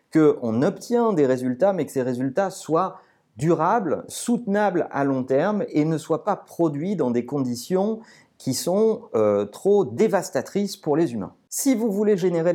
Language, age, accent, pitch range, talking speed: French, 40-59, French, 130-205 Hz, 165 wpm